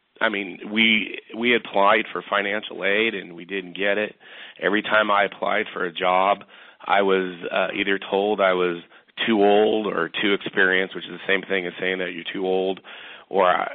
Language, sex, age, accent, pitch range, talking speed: English, male, 30-49, American, 90-105 Hz, 190 wpm